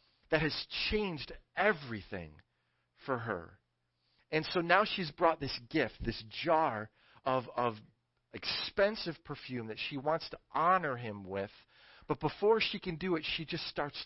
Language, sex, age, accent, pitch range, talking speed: English, male, 40-59, American, 105-155 Hz, 150 wpm